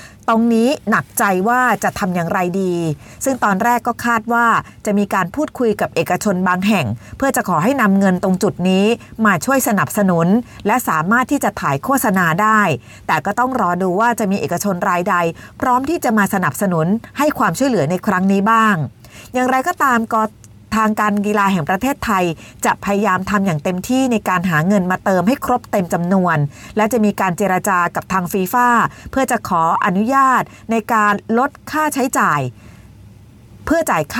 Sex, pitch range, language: female, 185-240 Hz, Thai